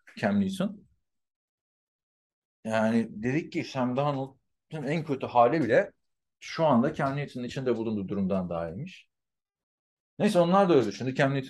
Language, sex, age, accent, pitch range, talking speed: Turkish, male, 40-59, native, 110-165 Hz, 130 wpm